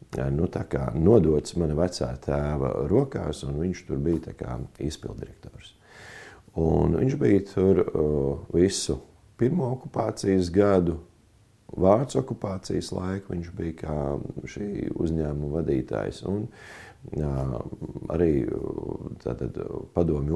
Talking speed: 110 wpm